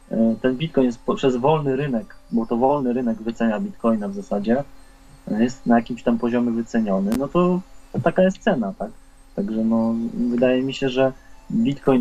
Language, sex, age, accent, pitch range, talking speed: Polish, male, 20-39, native, 115-140 Hz, 165 wpm